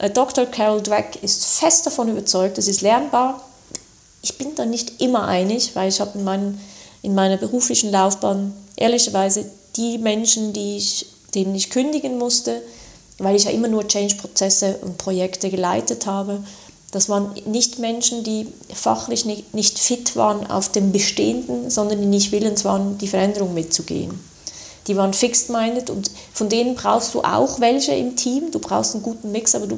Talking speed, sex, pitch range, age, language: 165 wpm, female, 195-230 Hz, 30-49, German